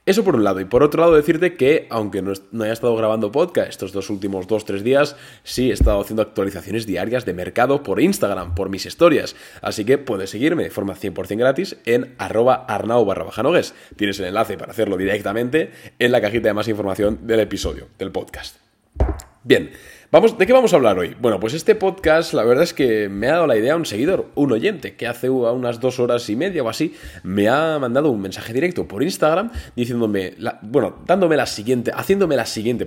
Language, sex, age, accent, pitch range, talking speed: Spanish, male, 20-39, Spanish, 105-140 Hz, 210 wpm